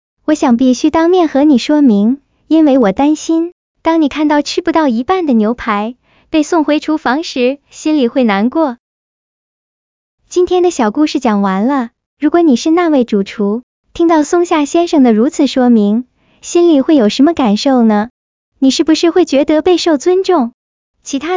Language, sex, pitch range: Chinese, male, 240-320 Hz